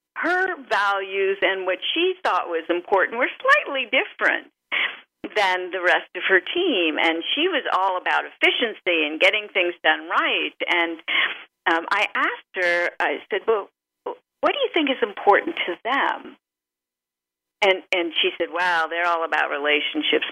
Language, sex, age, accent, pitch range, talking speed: English, female, 50-69, American, 160-245 Hz, 155 wpm